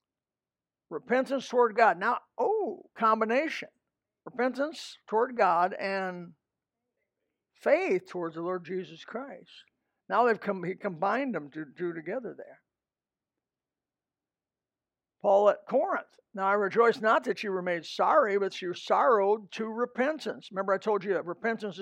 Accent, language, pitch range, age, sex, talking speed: American, English, 185-245 Hz, 60-79, male, 135 wpm